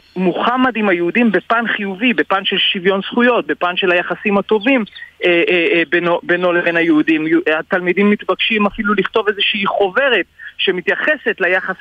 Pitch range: 160-210 Hz